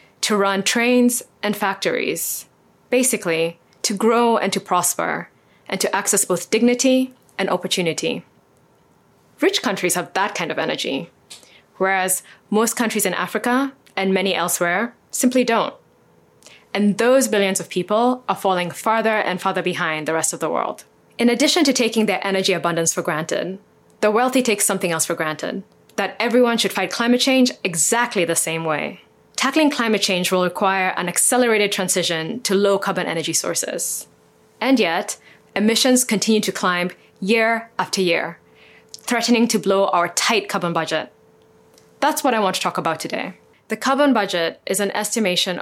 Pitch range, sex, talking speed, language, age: 180-235 Hz, female, 160 wpm, English, 20-39